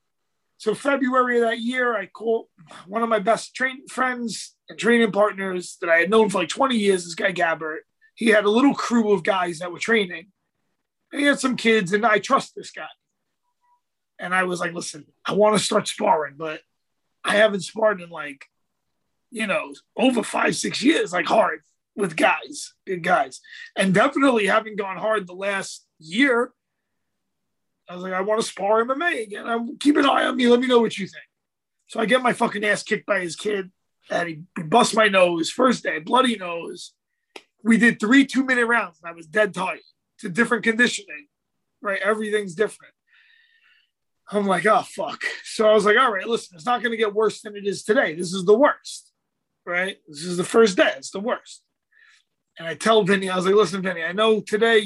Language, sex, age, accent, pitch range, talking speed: English, male, 30-49, American, 190-245 Hz, 200 wpm